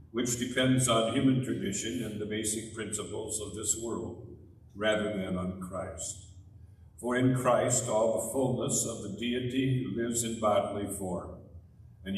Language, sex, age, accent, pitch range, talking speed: English, male, 60-79, American, 100-120 Hz, 155 wpm